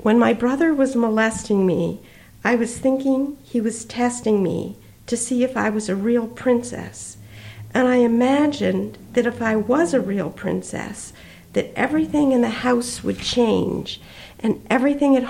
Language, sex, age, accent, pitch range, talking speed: English, female, 50-69, American, 185-235 Hz, 160 wpm